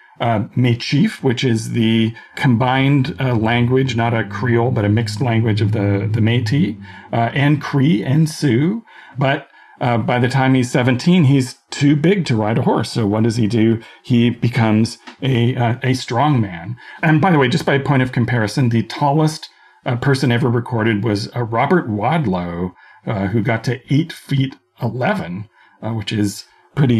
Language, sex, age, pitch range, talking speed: English, male, 40-59, 110-140 Hz, 180 wpm